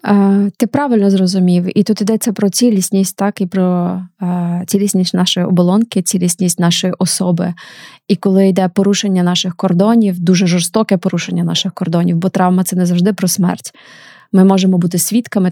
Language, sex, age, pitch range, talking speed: Ukrainian, female, 20-39, 180-205 Hz, 160 wpm